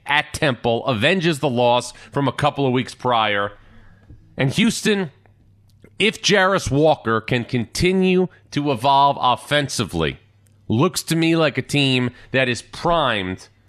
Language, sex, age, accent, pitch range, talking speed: English, male, 30-49, American, 105-145 Hz, 130 wpm